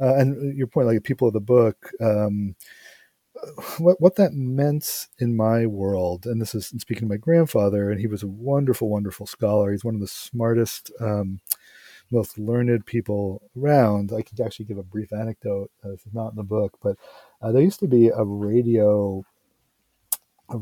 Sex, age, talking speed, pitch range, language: male, 40-59, 185 wpm, 105-130 Hz, English